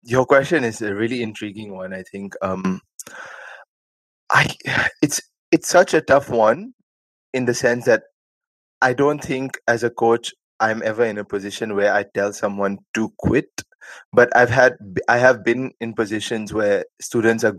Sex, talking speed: male, 165 wpm